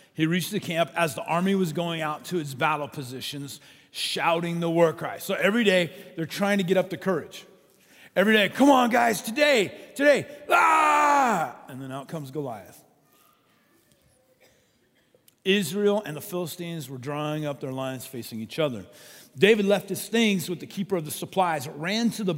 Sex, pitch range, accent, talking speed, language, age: male, 155-205 Hz, American, 175 wpm, English, 40-59